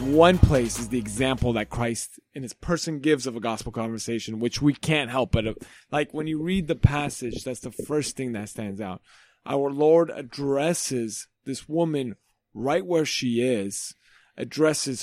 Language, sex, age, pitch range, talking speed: English, male, 30-49, 115-155 Hz, 170 wpm